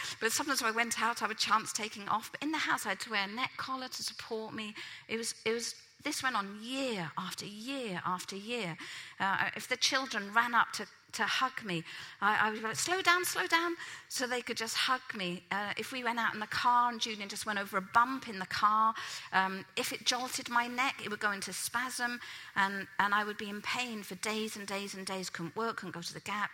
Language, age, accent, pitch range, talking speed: English, 40-59, British, 195-240 Hz, 245 wpm